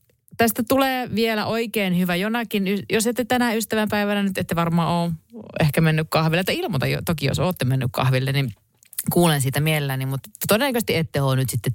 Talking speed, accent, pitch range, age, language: 180 wpm, native, 130-185 Hz, 30-49, Finnish